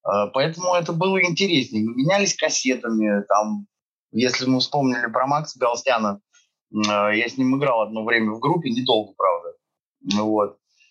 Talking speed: 145 wpm